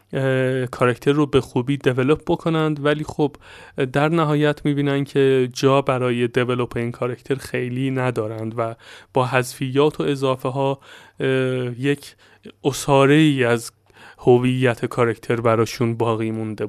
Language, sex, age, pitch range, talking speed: Persian, male, 20-39, 130-155 Hz, 120 wpm